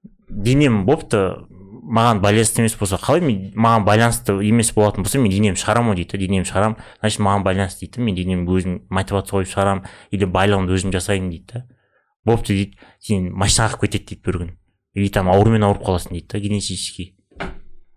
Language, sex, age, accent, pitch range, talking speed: Russian, male, 30-49, Turkish, 95-115 Hz, 145 wpm